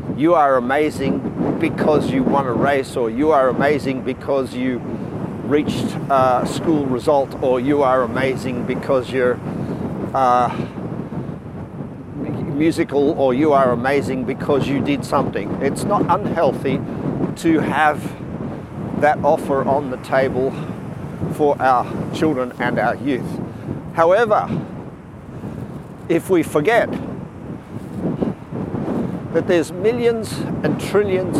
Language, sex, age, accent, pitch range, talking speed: English, male, 50-69, Australian, 130-170 Hz, 110 wpm